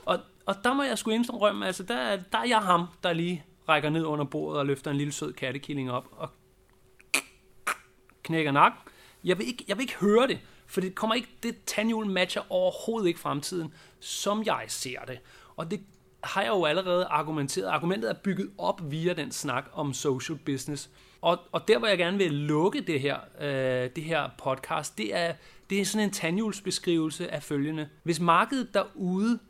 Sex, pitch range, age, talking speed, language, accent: male, 155-195 Hz, 30-49, 180 wpm, Danish, native